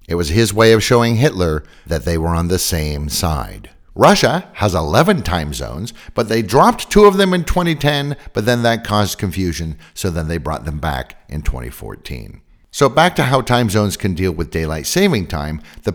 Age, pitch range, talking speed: 50-69, 80-125 Hz, 200 wpm